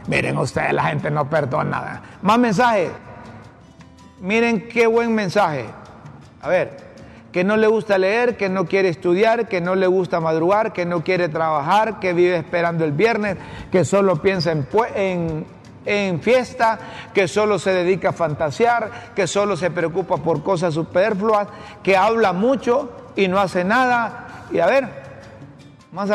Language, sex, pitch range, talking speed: Spanish, male, 175-215 Hz, 160 wpm